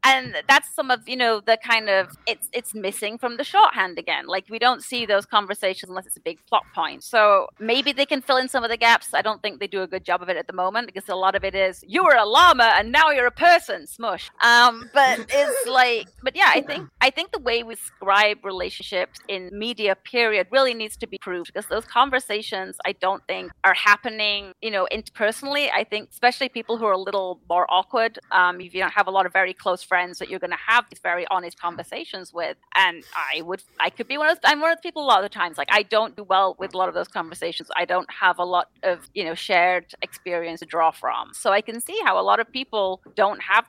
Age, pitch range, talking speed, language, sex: 30-49, 185-245 Hz, 255 wpm, English, female